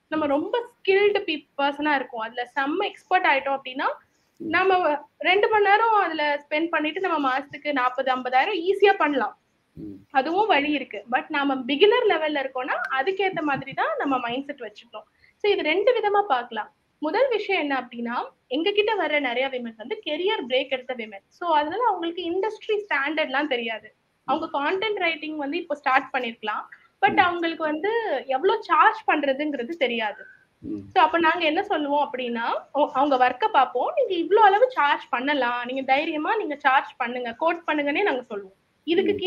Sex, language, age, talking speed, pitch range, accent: female, English, 20-39, 105 wpm, 260-365 Hz, Indian